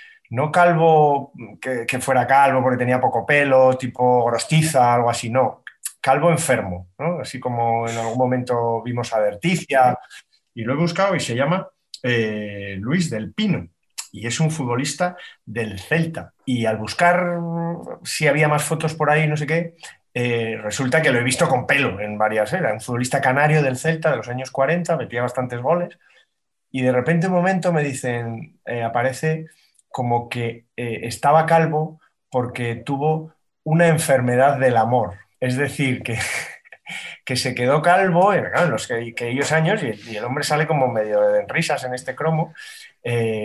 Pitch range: 120-160 Hz